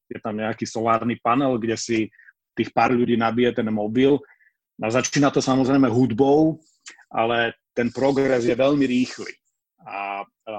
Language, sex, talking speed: Slovak, male, 145 wpm